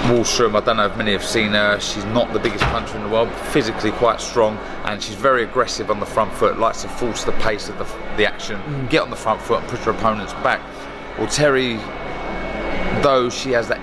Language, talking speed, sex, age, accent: English, 235 wpm, male, 30-49, British